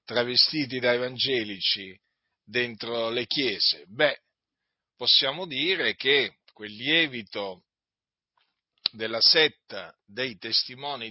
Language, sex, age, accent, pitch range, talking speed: Italian, male, 50-69, native, 110-165 Hz, 85 wpm